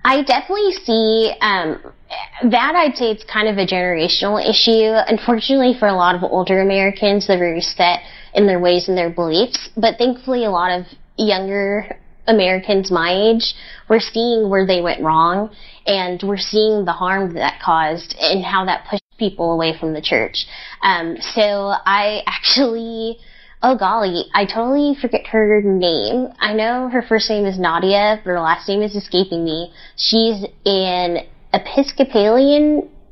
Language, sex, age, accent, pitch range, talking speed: English, female, 10-29, American, 180-225 Hz, 160 wpm